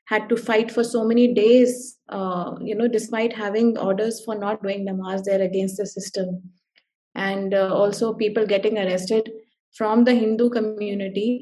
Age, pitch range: 20-39, 200-235 Hz